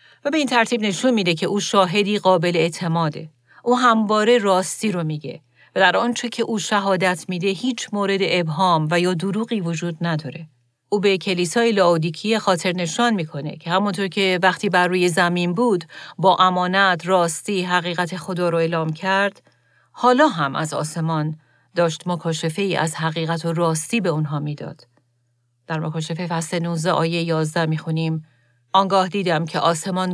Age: 40-59